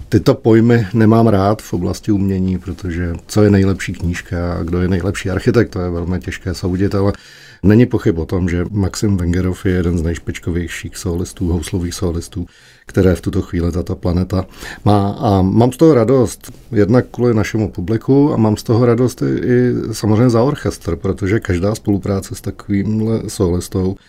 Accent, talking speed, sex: native, 170 wpm, male